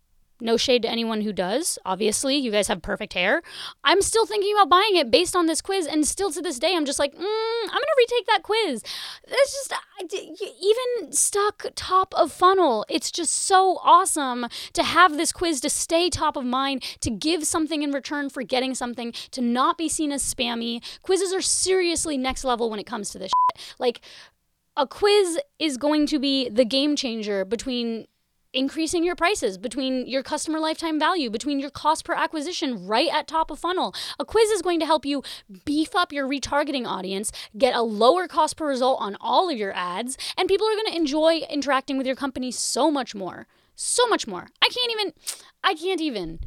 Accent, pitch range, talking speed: American, 250-360 Hz, 200 wpm